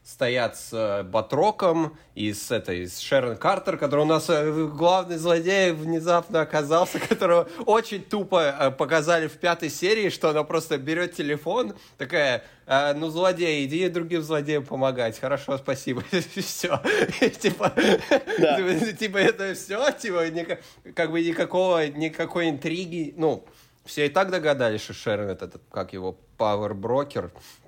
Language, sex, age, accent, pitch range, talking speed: Russian, male, 20-39, native, 120-165 Hz, 120 wpm